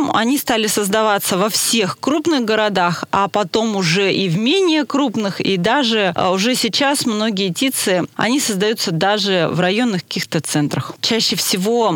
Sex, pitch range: female, 180-220 Hz